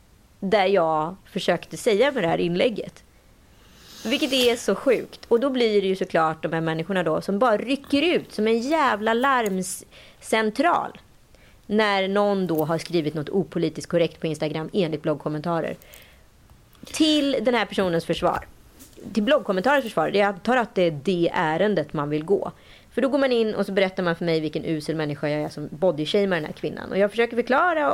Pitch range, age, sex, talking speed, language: 160-225 Hz, 30-49, female, 185 wpm, Swedish